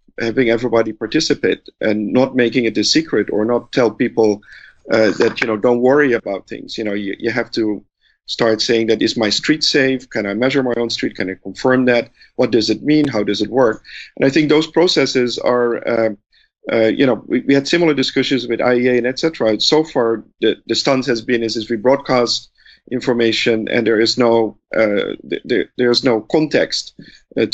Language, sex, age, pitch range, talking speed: English, male, 50-69, 110-130 Hz, 205 wpm